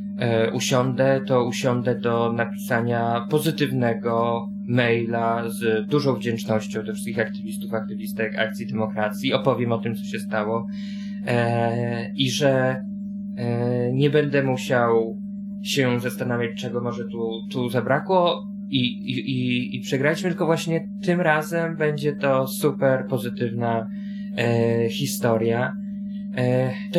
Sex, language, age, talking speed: male, Polish, 20-39, 120 wpm